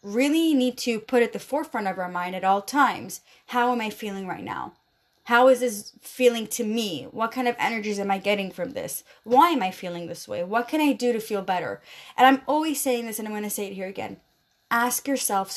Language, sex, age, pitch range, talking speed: English, female, 20-39, 205-260 Hz, 235 wpm